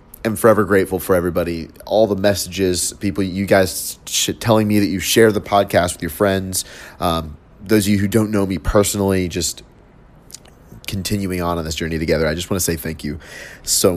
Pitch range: 80-100 Hz